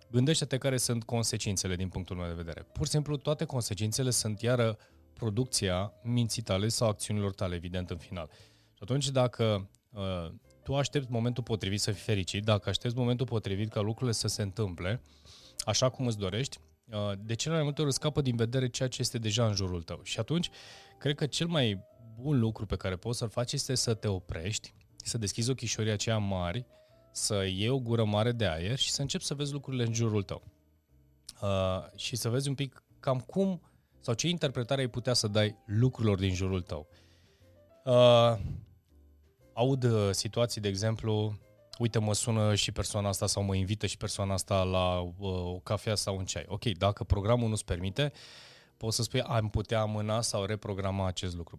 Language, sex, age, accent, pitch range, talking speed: Romanian, male, 20-39, native, 95-125 Hz, 185 wpm